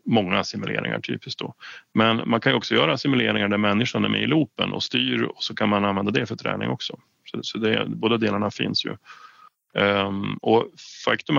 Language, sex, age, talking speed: Swedish, male, 30-49, 200 wpm